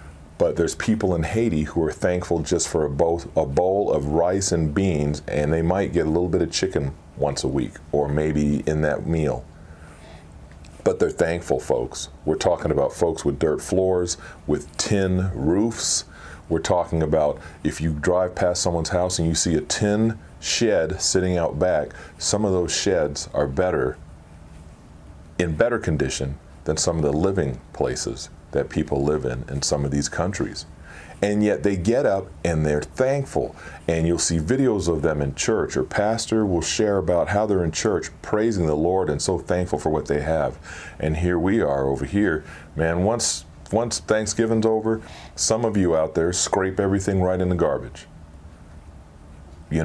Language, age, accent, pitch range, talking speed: English, 40-59, American, 75-90 Hz, 180 wpm